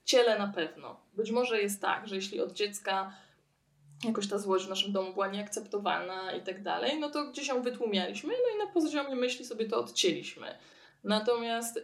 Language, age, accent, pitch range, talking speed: Polish, 20-39, native, 190-230 Hz, 185 wpm